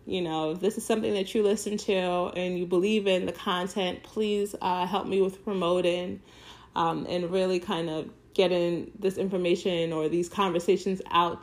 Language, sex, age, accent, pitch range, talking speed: English, female, 30-49, American, 175-210 Hz, 175 wpm